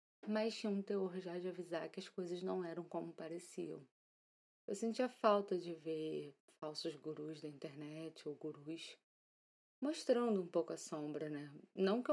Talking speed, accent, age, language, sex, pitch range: 165 wpm, Brazilian, 20-39, Portuguese, female, 160-200 Hz